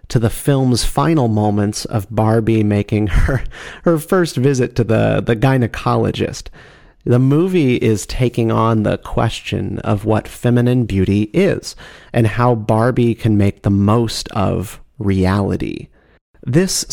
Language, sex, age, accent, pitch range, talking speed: English, male, 40-59, American, 105-125 Hz, 135 wpm